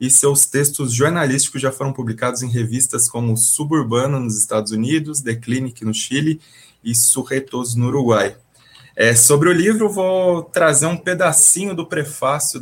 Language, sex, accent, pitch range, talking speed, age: Portuguese, male, Brazilian, 115-140 Hz, 150 wpm, 20-39